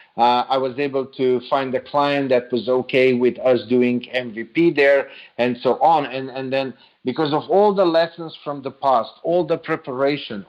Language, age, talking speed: English, 50-69, 190 wpm